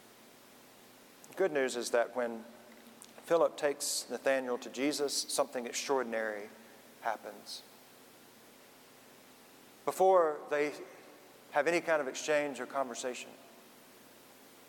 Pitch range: 125-160 Hz